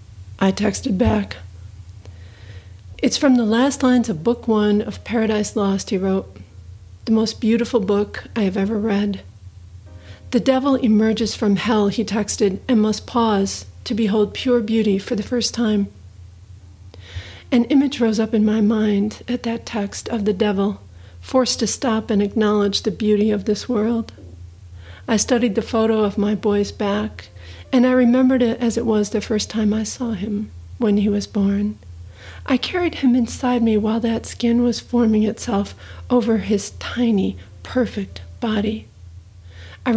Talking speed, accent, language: 160 wpm, American, English